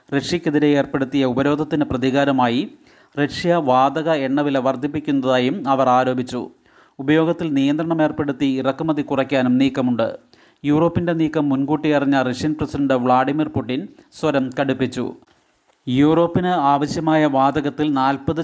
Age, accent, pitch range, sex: 30-49, native, 135-150 Hz, male